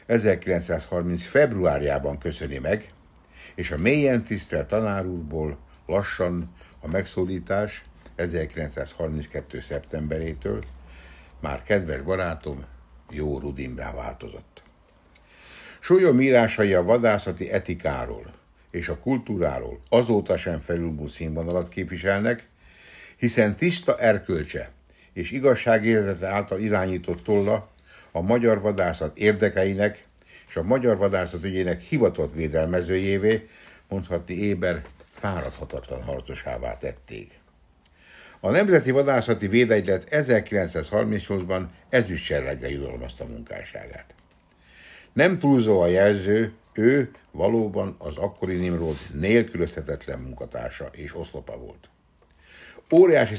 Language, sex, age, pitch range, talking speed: Hungarian, male, 60-79, 80-105 Hz, 90 wpm